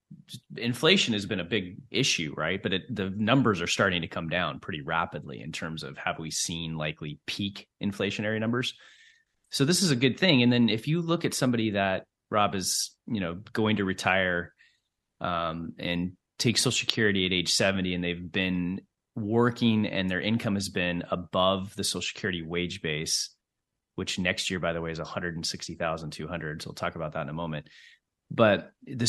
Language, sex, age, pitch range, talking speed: English, male, 30-49, 90-120 Hz, 185 wpm